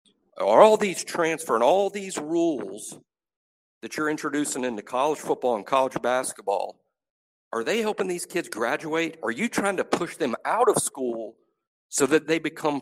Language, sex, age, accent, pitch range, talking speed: English, male, 50-69, American, 130-165 Hz, 170 wpm